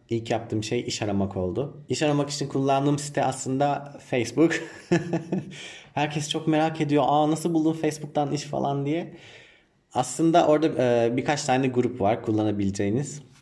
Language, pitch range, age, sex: Turkish, 105-140 Hz, 30-49, male